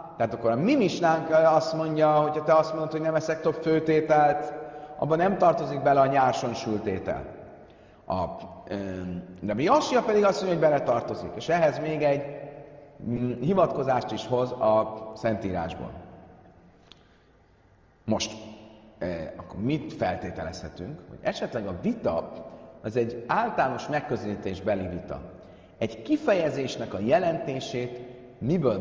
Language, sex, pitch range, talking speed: Hungarian, male, 105-155 Hz, 125 wpm